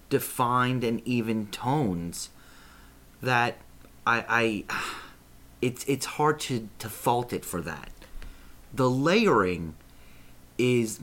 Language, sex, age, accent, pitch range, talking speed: English, male, 30-49, American, 105-150 Hz, 105 wpm